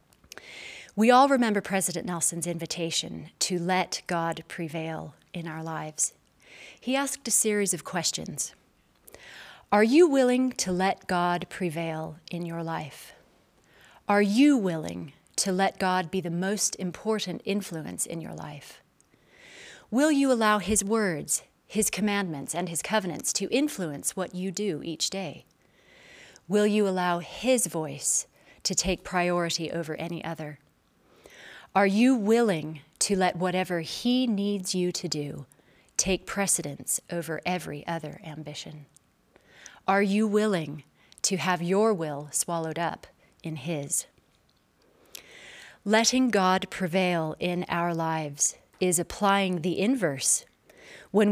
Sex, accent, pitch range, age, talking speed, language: female, American, 170-210 Hz, 30-49, 130 wpm, English